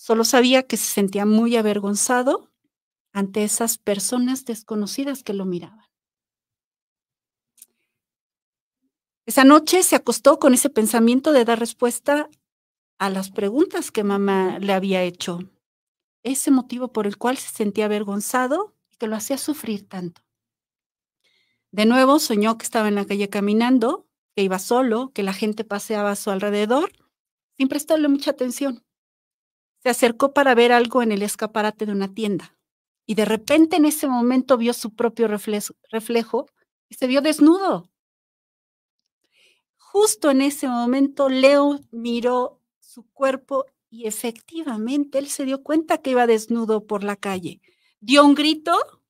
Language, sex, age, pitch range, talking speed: Spanish, female, 40-59, 215-275 Hz, 145 wpm